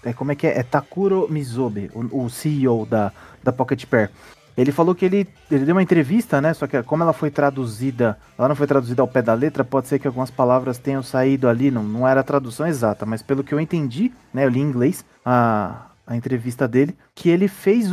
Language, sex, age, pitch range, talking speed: Portuguese, male, 30-49, 130-200 Hz, 225 wpm